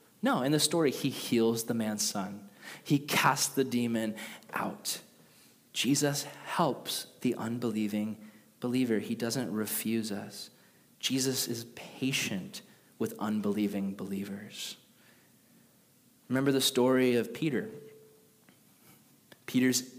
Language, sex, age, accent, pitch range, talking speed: English, male, 20-39, American, 115-165 Hz, 105 wpm